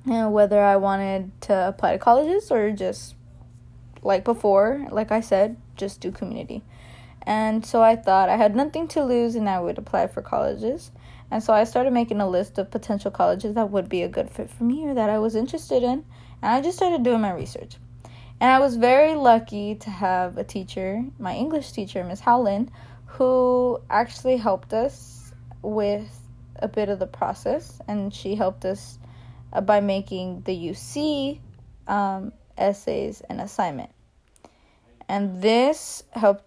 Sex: female